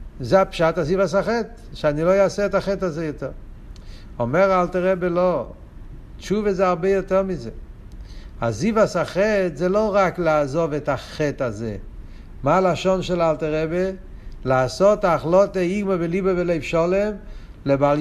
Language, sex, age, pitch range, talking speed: Hebrew, male, 60-79, 135-195 Hz, 135 wpm